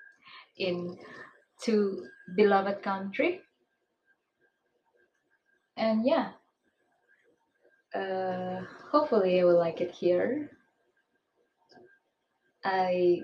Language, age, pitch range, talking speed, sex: English, 20-39, 175-240 Hz, 65 wpm, female